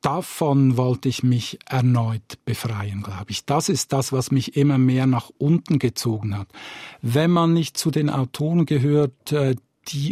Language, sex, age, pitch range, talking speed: German, male, 50-69, 120-150 Hz, 160 wpm